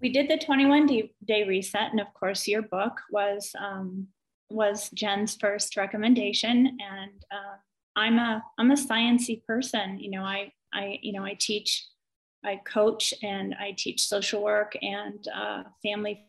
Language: English